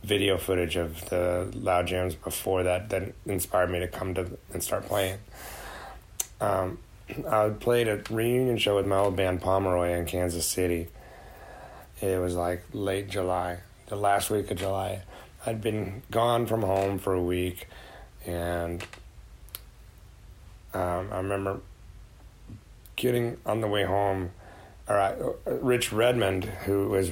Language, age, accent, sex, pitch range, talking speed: English, 30-49, American, male, 90-105 Hz, 140 wpm